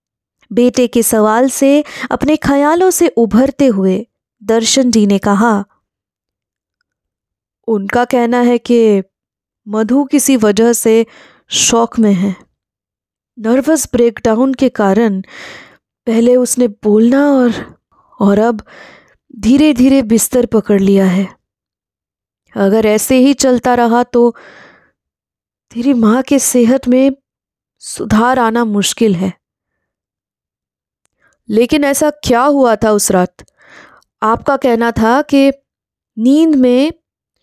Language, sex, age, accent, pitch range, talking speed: Hindi, female, 20-39, native, 215-270 Hz, 110 wpm